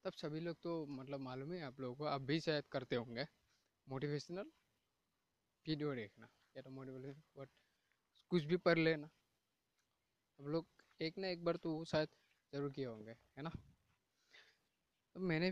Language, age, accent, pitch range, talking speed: Hindi, 20-39, native, 130-170 Hz, 160 wpm